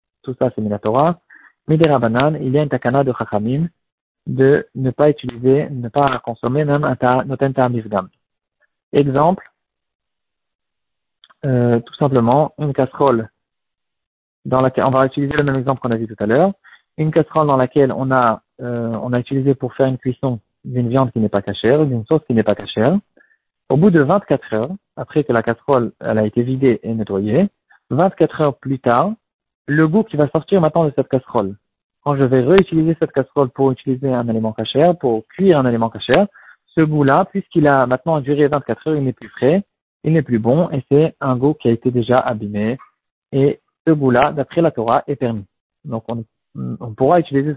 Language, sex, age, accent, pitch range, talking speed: French, male, 40-59, French, 120-155 Hz, 195 wpm